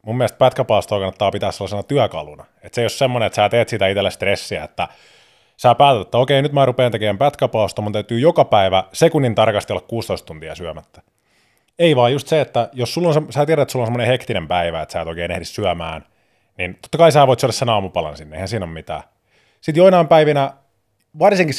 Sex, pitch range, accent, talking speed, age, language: male, 100-140 Hz, native, 215 wpm, 20-39, Finnish